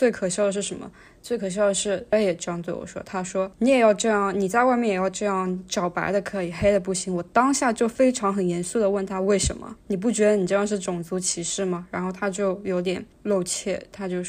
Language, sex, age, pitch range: Chinese, female, 20-39, 185-210 Hz